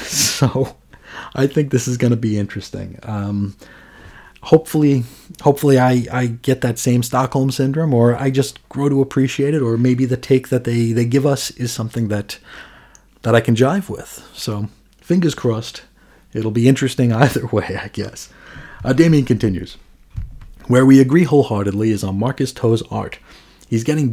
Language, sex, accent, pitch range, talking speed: English, male, American, 110-135 Hz, 165 wpm